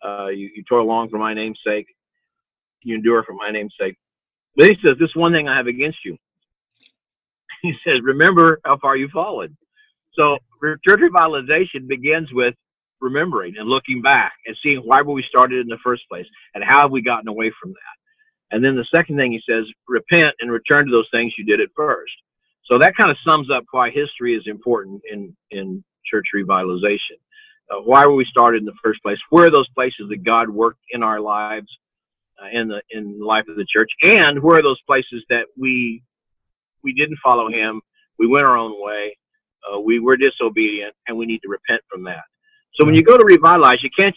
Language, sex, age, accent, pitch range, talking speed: English, male, 50-69, American, 115-165 Hz, 210 wpm